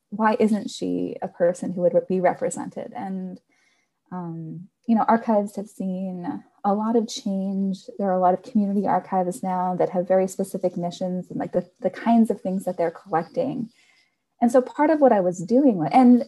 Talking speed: 190 wpm